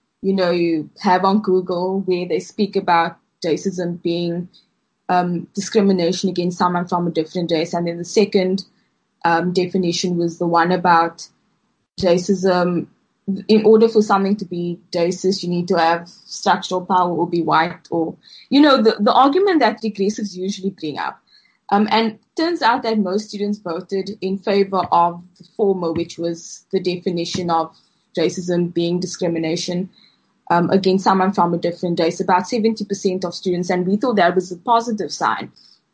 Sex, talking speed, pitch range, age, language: female, 165 wpm, 175-215 Hz, 20-39, English